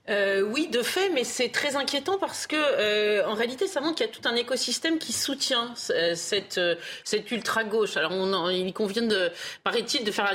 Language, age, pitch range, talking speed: French, 30-49, 200-265 Hz, 215 wpm